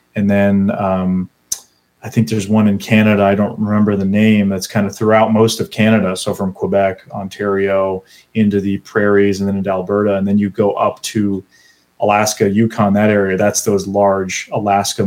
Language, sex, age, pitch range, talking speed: English, male, 30-49, 100-115 Hz, 185 wpm